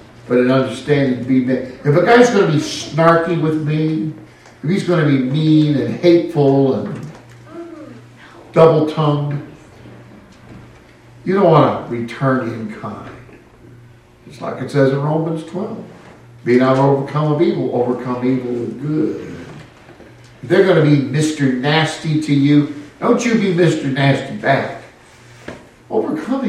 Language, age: English, 50-69